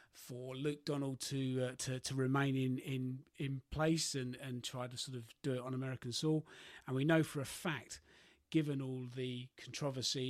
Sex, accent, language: male, British, English